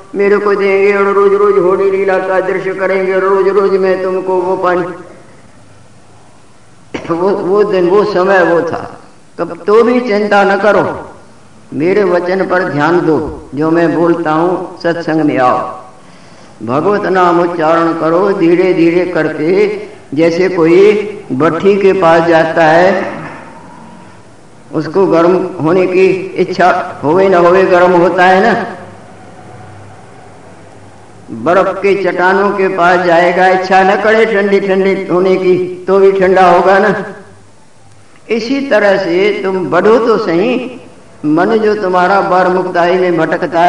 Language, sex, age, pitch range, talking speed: Hindi, female, 50-69, 170-195 Hz, 135 wpm